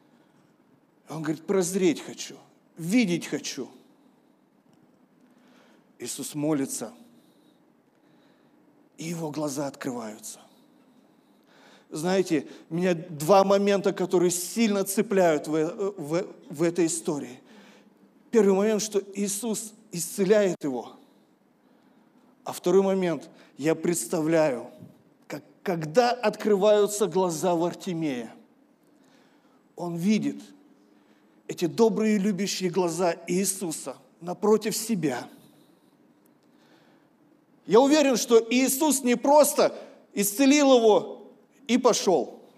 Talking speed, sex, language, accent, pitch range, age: 85 wpm, male, Russian, native, 165-235 Hz, 40-59